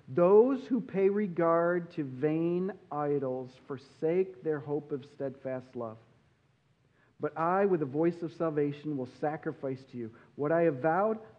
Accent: American